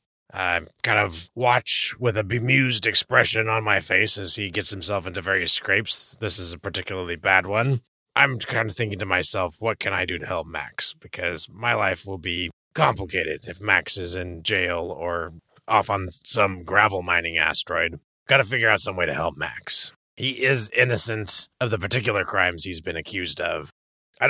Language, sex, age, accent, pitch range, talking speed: English, male, 30-49, American, 90-110 Hz, 190 wpm